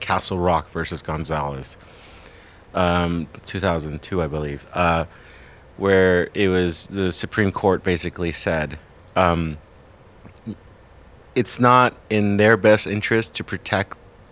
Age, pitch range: 30-49, 80-100 Hz